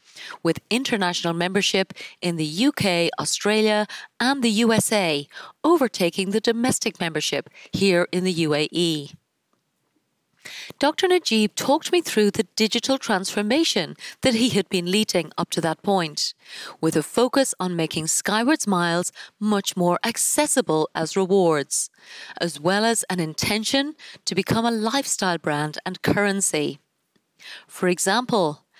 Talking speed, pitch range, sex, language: 125 wpm, 170-235 Hz, female, English